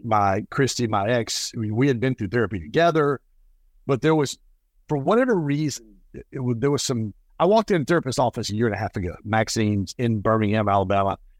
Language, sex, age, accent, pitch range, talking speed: English, male, 50-69, American, 105-135 Hz, 205 wpm